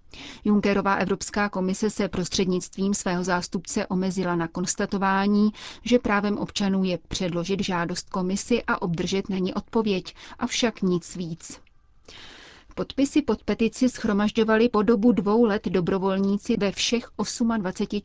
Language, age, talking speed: Czech, 30-49, 125 wpm